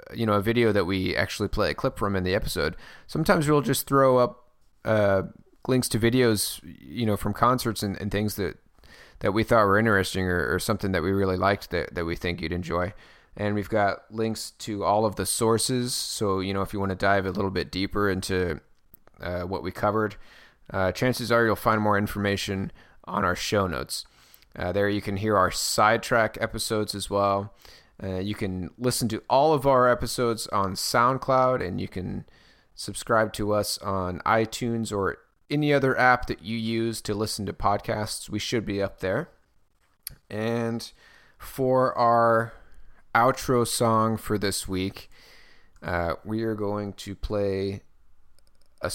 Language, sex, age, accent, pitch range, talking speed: English, male, 20-39, American, 95-115 Hz, 180 wpm